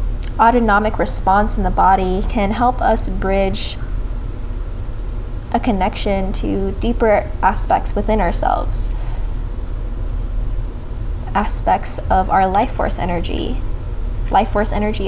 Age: 20-39